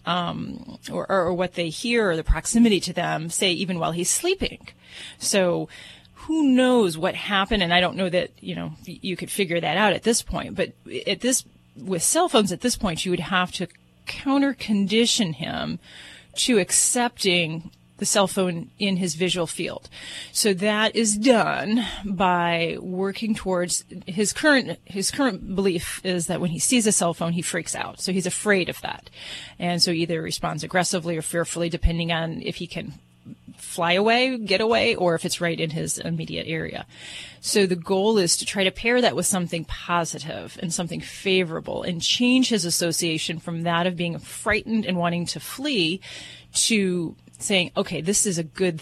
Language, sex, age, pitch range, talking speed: English, female, 30-49, 170-210 Hz, 180 wpm